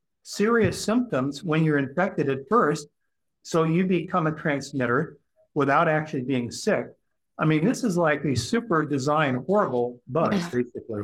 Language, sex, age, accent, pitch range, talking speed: English, male, 50-69, American, 150-195 Hz, 150 wpm